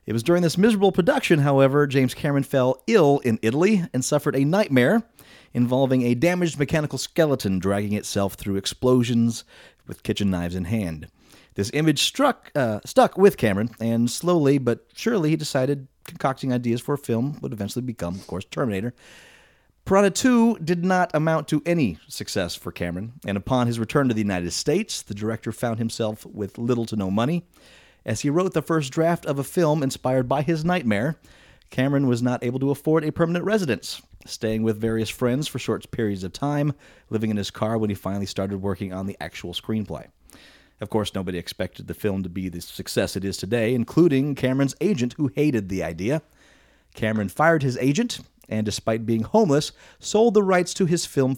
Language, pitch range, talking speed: English, 105-150 Hz, 185 wpm